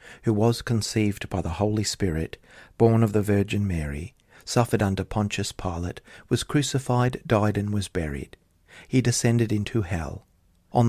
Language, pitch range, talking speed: English, 100-130 Hz, 150 wpm